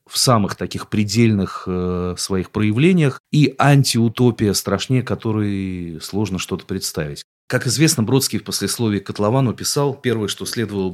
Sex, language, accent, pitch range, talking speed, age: male, Russian, native, 95-115 Hz, 135 wpm, 30-49